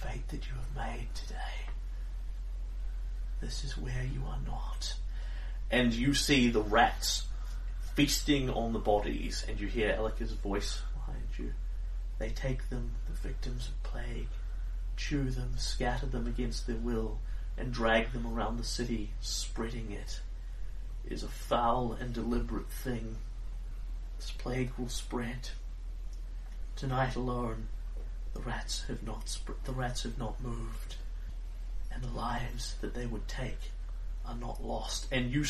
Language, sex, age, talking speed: English, male, 30-49, 145 wpm